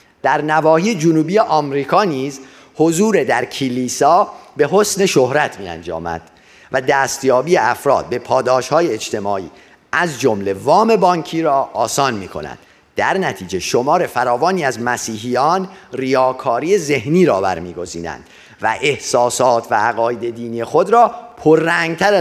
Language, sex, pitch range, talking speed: Persian, male, 130-170 Hz, 120 wpm